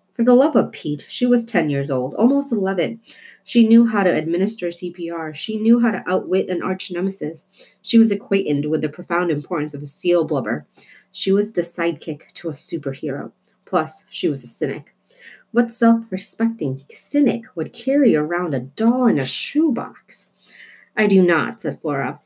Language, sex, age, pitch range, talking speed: English, female, 30-49, 145-210 Hz, 175 wpm